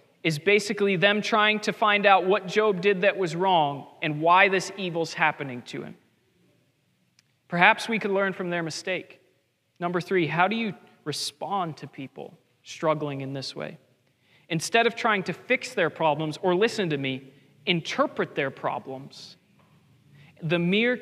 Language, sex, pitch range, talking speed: English, male, 160-205 Hz, 155 wpm